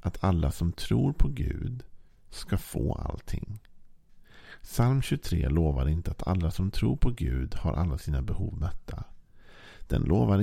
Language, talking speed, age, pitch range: Swedish, 150 wpm, 50-69, 85-105 Hz